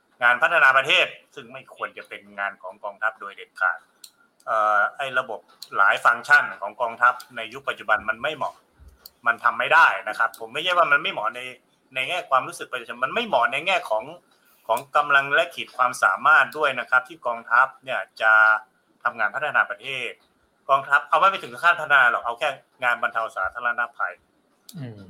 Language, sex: Thai, male